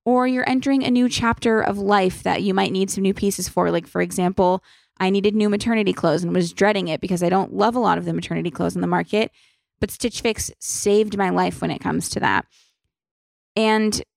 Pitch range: 190-235 Hz